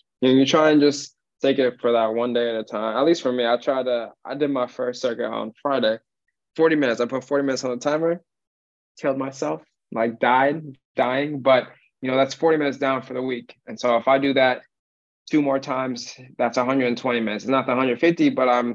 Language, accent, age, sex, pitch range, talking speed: English, American, 20-39, male, 115-130 Hz, 225 wpm